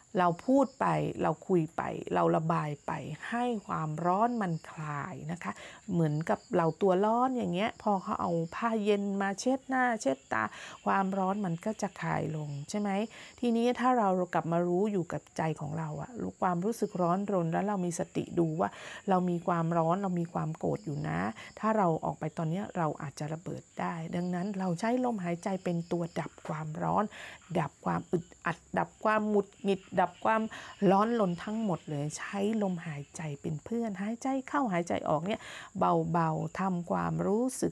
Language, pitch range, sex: Thai, 165-215 Hz, female